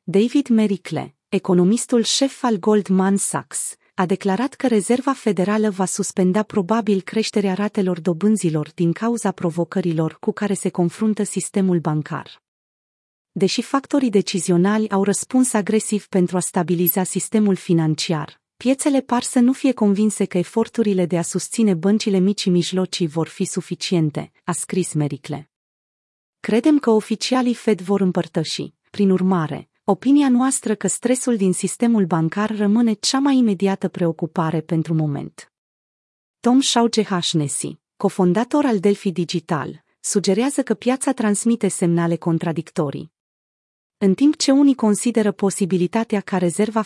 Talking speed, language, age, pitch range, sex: 130 wpm, Romanian, 30-49, 180-225 Hz, female